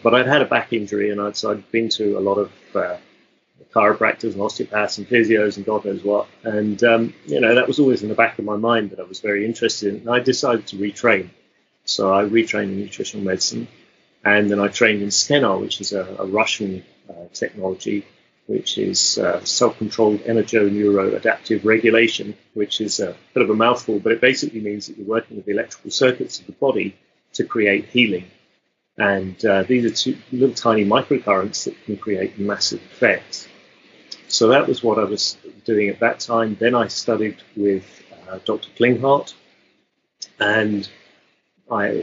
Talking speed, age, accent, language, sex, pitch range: 185 wpm, 30-49, British, English, male, 100-115 Hz